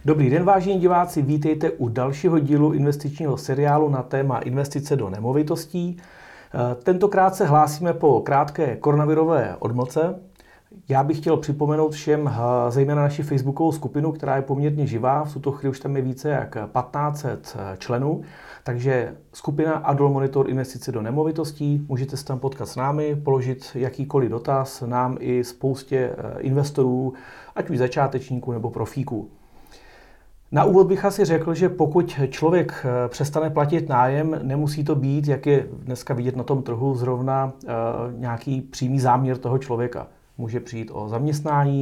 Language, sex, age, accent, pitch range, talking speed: Czech, male, 40-59, native, 125-150 Hz, 145 wpm